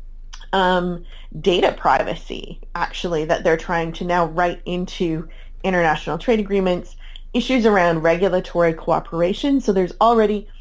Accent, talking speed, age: American, 120 wpm, 20-39